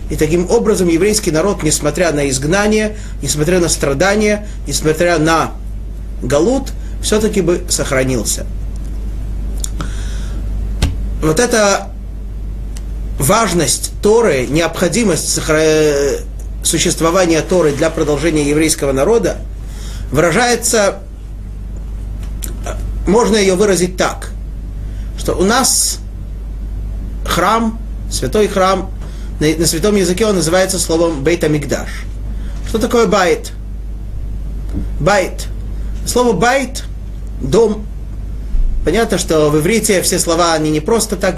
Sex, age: male, 30-49